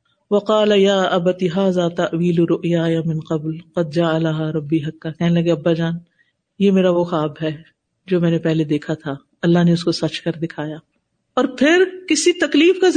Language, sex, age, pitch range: Urdu, female, 50-69, 170-250 Hz